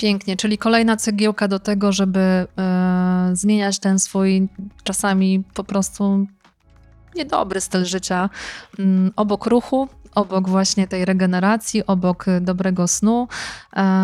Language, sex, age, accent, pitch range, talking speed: Polish, female, 20-39, native, 170-195 Hz, 105 wpm